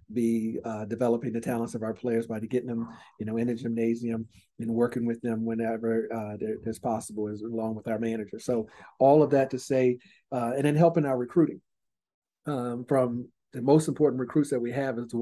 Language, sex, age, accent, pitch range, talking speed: English, male, 40-59, American, 115-130 Hz, 210 wpm